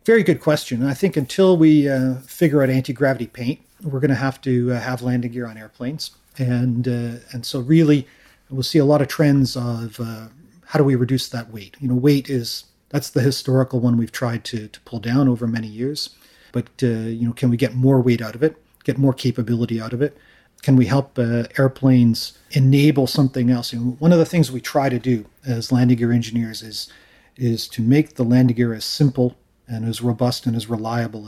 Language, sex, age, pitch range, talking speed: English, male, 40-59, 115-135 Hz, 220 wpm